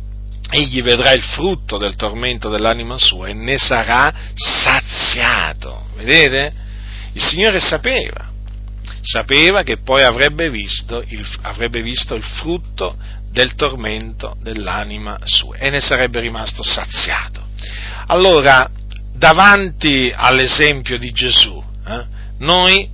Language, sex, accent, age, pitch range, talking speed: Italian, male, native, 40-59, 100-150 Hz, 110 wpm